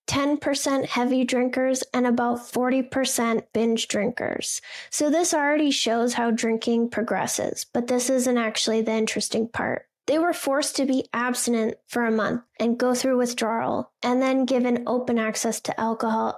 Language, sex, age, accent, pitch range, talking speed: English, female, 10-29, American, 230-255 Hz, 155 wpm